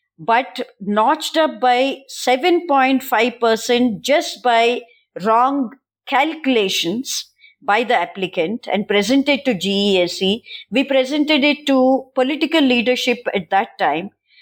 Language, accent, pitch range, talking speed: English, Indian, 210-275 Hz, 105 wpm